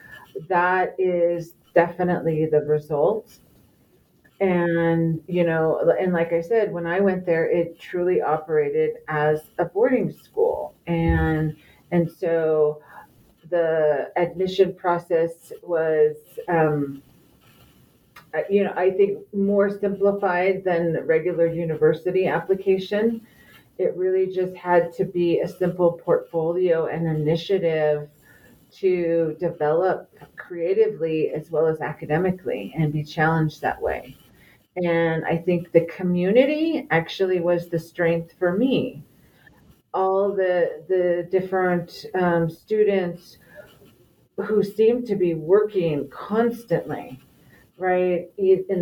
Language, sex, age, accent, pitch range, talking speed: English, female, 40-59, American, 160-190 Hz, 110 wpm